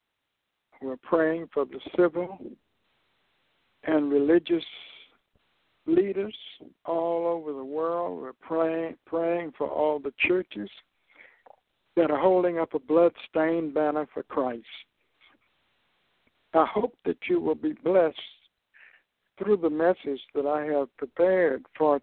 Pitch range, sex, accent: 150-185 Hz, male, American